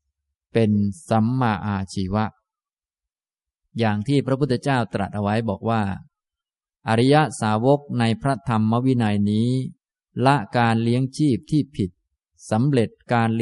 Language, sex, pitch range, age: Thai, male, 105-125 Hz, 20-39